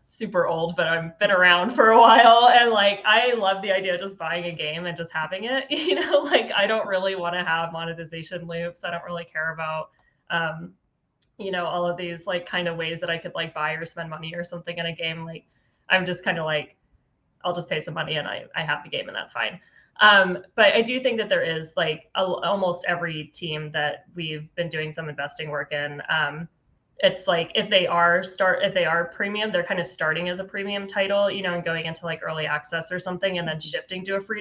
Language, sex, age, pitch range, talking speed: English, female, 20-39, 165-195 Hz, 240 wpm